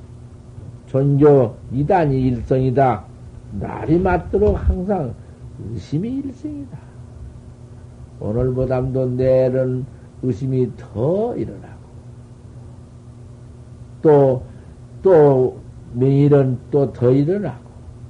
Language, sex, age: Korean, male, 60-79